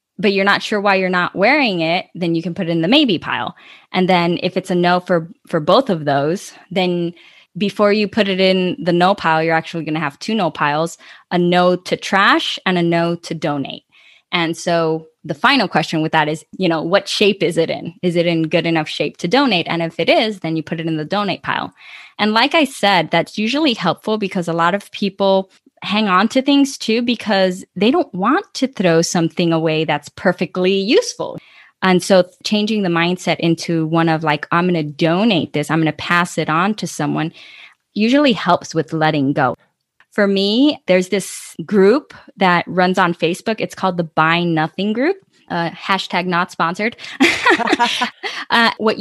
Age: 10-29